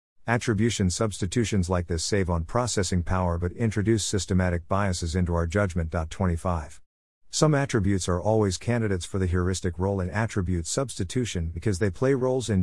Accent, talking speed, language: American, 155 wpm, English